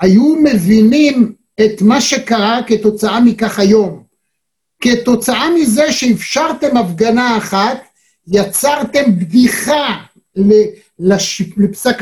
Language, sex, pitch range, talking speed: Hebrew, male, 200-245 Hz, 80 wpm